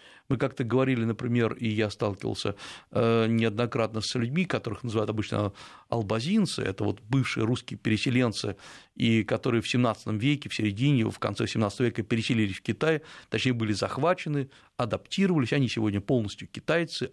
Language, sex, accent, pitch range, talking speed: Russian, male, native, 110-155 Hz, 145 wpm